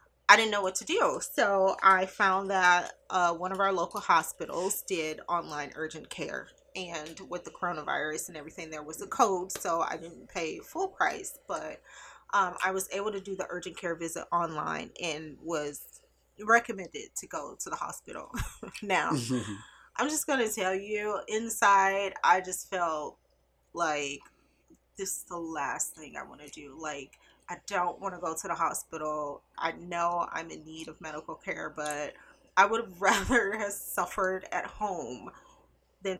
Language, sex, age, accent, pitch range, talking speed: English, female, 20-39, American, 160-200 Hz, 170 wpm